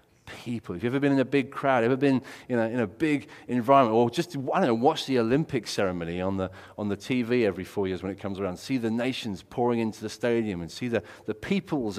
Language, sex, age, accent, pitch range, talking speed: English, male, 30-49, British, 110-140 Hz, 255 wpm